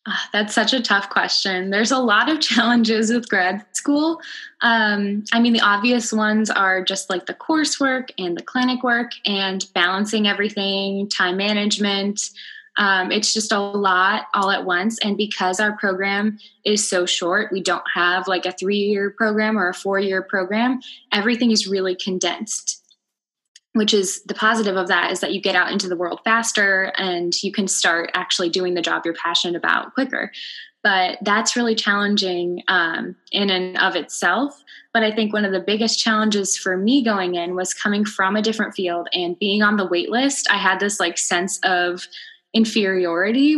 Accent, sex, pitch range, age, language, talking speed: American, female, 185-220 Hz, 10-29, English, 180 wpm